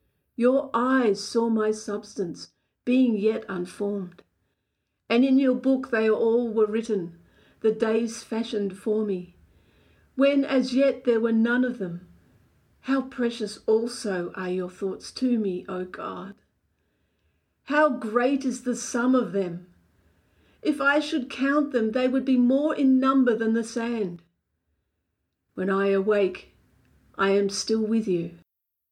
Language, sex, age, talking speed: English, female, 50-69, 140 wpm